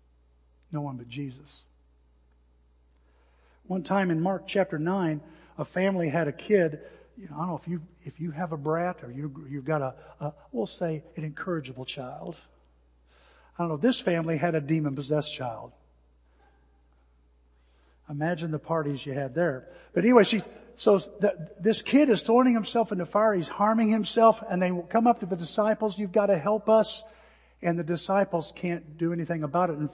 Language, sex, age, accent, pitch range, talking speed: English, male, 50-69, American, 130-195 Hz, 180 wpm